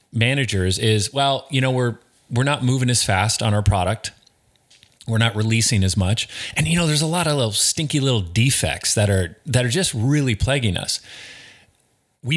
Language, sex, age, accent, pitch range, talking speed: English, male, 30-49, American, 100-130 Hz, 190 wpm